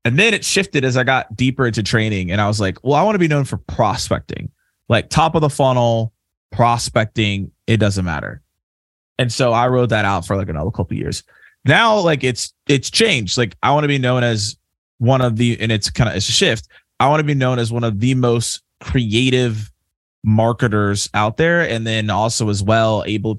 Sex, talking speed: male, 220 wpm